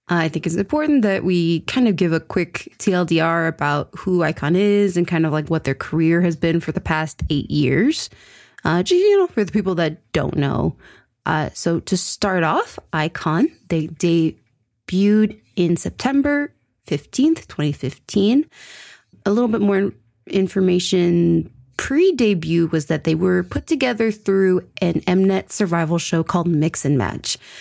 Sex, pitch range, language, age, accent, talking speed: female, 160-200 Hz, English, 20-39, American, 160 wpm